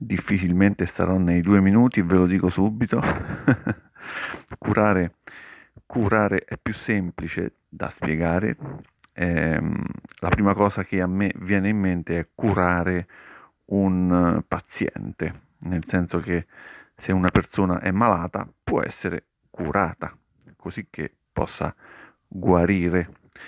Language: Italian